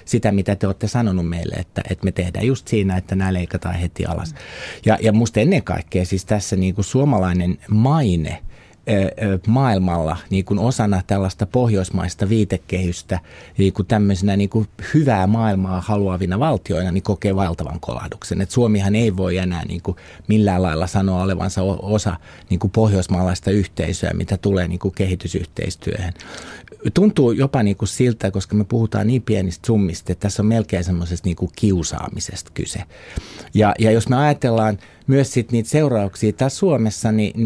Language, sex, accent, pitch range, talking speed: Finnish, male, native, 95-115 Hz, 145 wpm